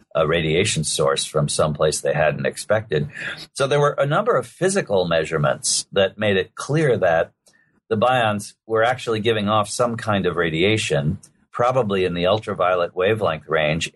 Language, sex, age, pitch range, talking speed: English, male, 50-69, 90-115 Hz, 160 wpm